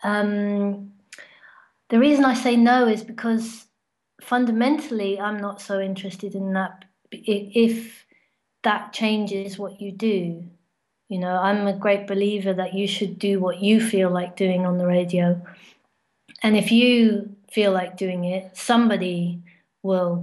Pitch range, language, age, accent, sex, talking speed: 190-220 Hz, English, 30-49, British, female, 140 wpm